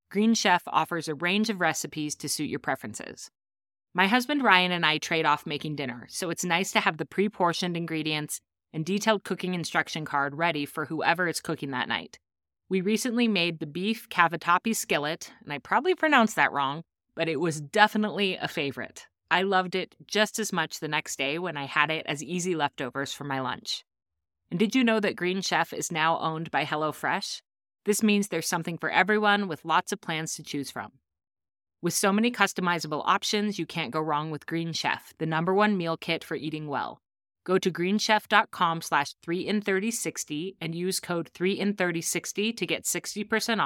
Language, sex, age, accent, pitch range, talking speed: English, female, 30-49, American, 155-195 Hz, 185 wpm